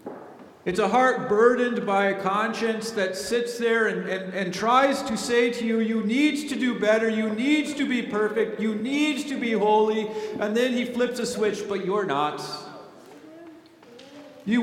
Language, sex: English, male